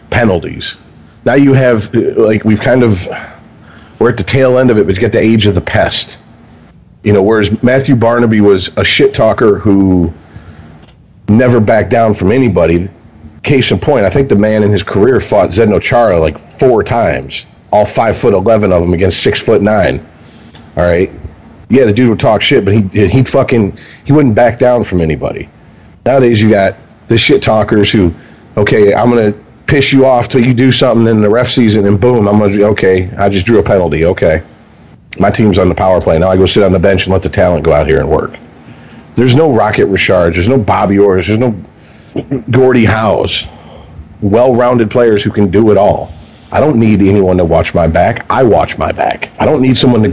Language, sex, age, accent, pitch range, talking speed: English, male, 40-59, American, 95-115 Hz, 205 wpm